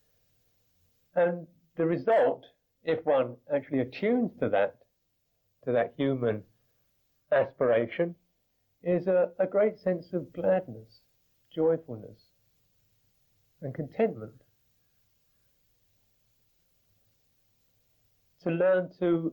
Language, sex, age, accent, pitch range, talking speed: English, male, 50-69, British, 110-145 Hz, 80 wpm